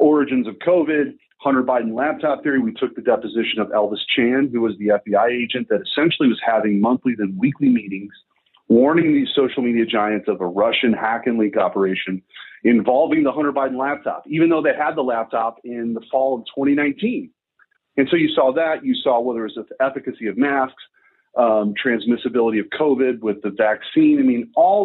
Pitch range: 110-145 Hz